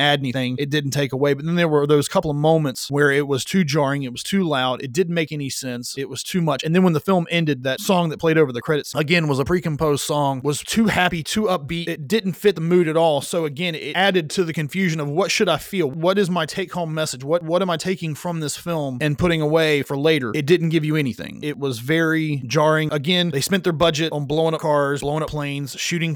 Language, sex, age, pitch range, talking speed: English, male, 30-49, 140-165 Hz, 260 wpm